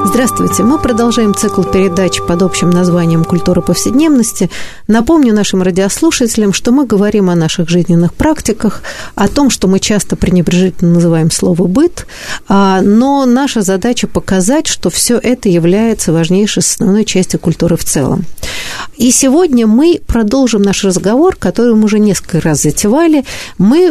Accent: native